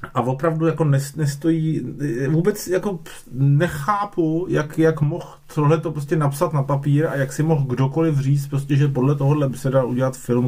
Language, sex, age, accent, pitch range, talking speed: Czech, male, 30-49, native, 120-145 Hz, 170 wpm